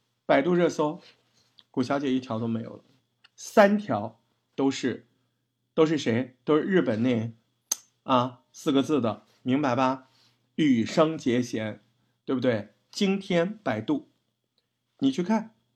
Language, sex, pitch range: Chinese, male, 120-205 Hz